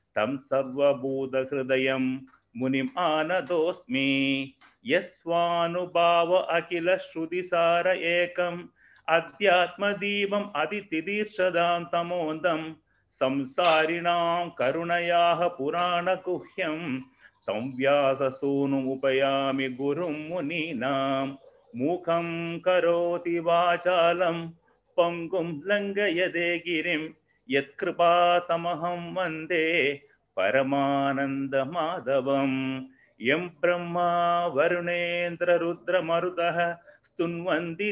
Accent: native